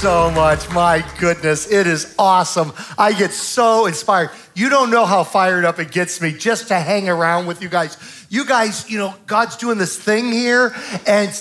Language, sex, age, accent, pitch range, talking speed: English, male, 40-59, American, 180-235 Hz, 195 wpm